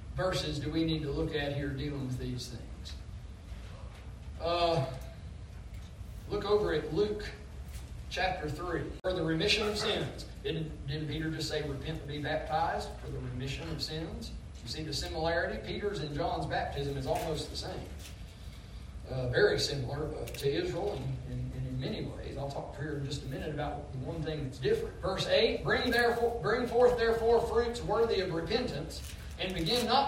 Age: 40-59